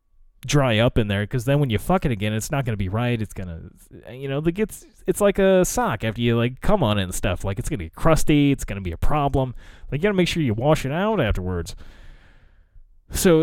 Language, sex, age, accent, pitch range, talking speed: English, male, 20-39, American, 100-155 Hz, 270 wpm